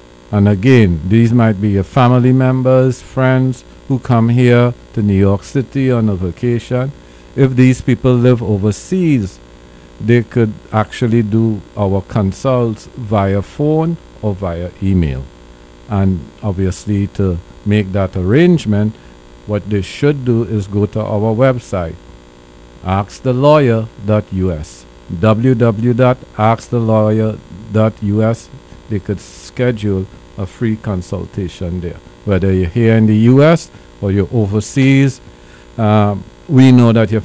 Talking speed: 120 wpm